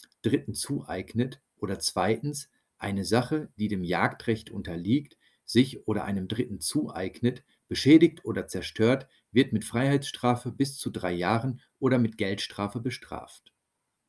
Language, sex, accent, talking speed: German, male, German, 125 wpm